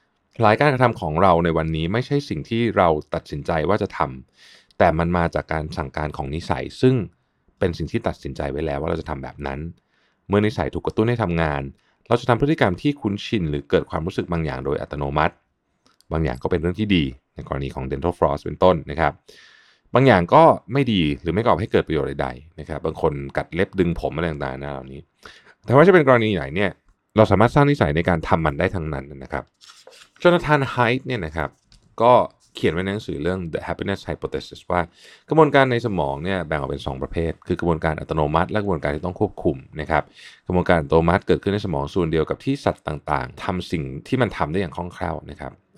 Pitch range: 75-100 Hz